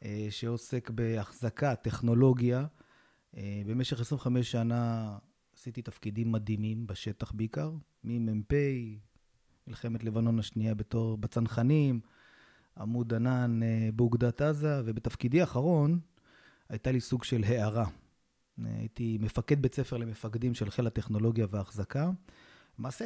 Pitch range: 110-140 Hz